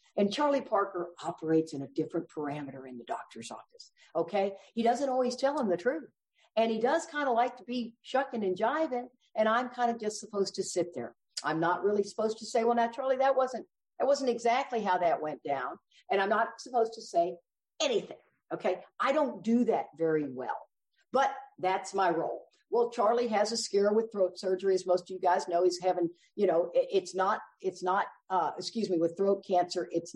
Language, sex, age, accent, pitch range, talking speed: English, female, 60-79, American, 175-235 Hz, 205 wpm